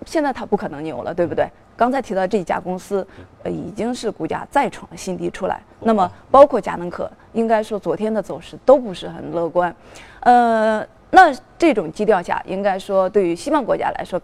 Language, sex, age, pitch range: Chinese, female, 20-39, 175-235 Hz